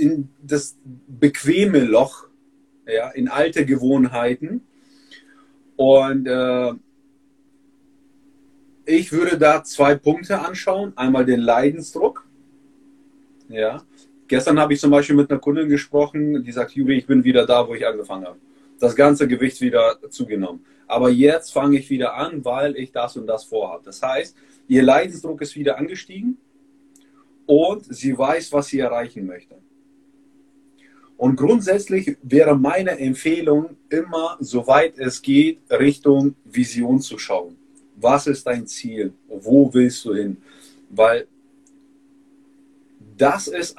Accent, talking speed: German, 130 wpm